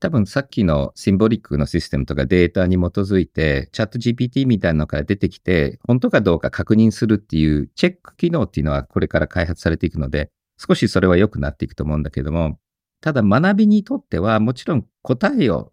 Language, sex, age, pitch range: Japanese, male, 50-69, 80-125 Hz